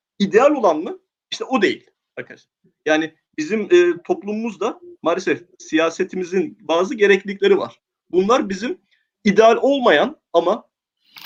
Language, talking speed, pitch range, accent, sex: Turkish, 110 wpm, 200-315 Hz, native, male